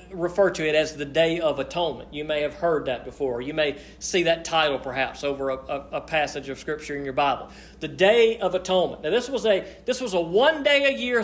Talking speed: 215 wpm